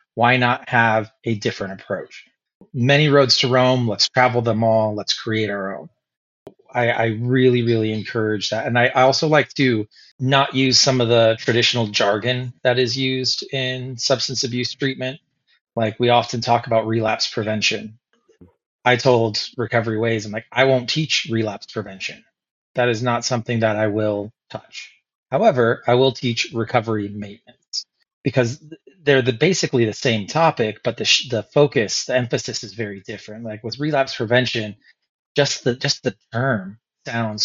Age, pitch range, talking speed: 30-49, 110-130 Hz, 160 wpm